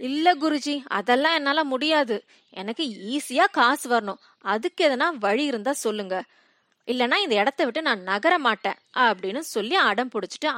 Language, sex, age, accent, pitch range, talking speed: Tamil, female, 20-39, native, 200-280 Hz, 135 wpm